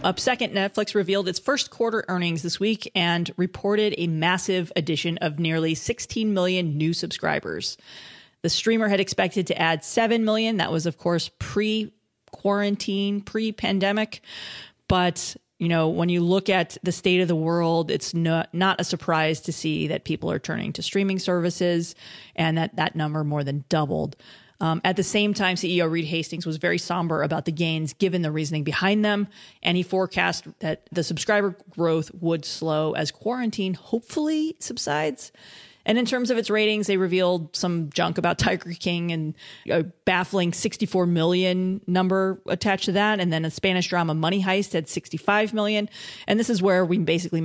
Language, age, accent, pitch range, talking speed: English, 30-49, American, 165-200 Hz, 175 wpm